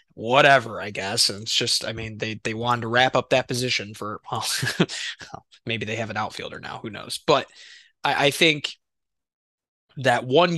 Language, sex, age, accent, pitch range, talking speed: English, male, 20-39, American, 110-135 Hz, 180 wpm